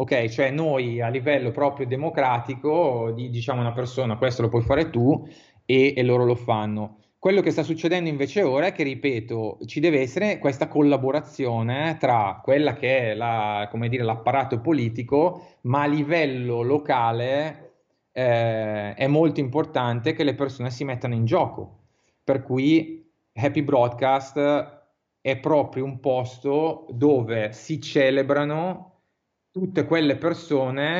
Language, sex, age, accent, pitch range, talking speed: Italian, male, 30-49, native, 120-150 Hz, 135 wpm